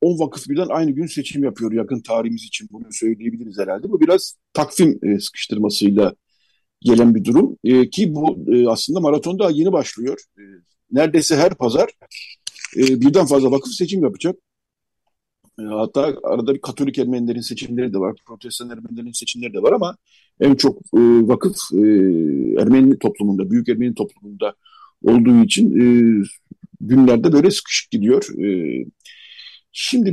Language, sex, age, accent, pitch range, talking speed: Turkish, male, 50-69, native, 115-175 Hz, 145 wpm